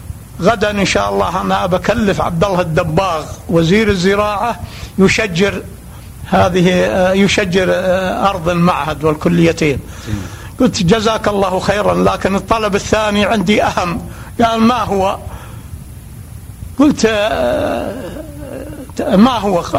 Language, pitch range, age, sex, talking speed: Arabic, 165-210 Hz, 60-79, male, 95 wpm